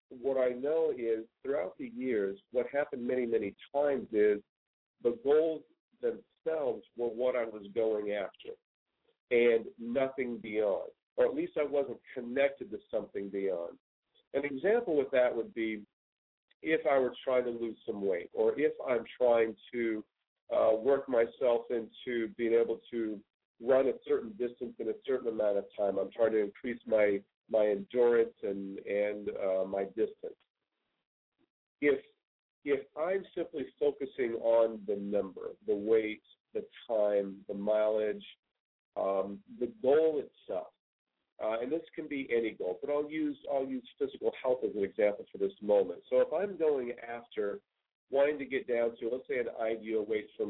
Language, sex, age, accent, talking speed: English, male, 50-69, American, 160 wpm